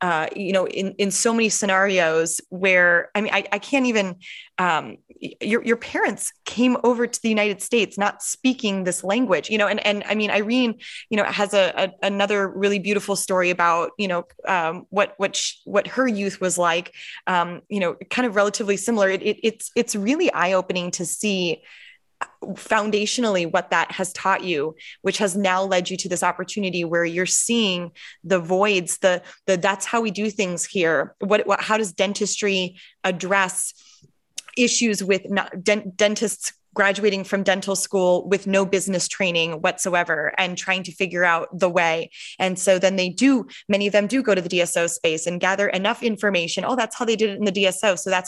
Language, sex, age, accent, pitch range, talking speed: English, female, 20-39, American, 180-210 Hz, 195 wpm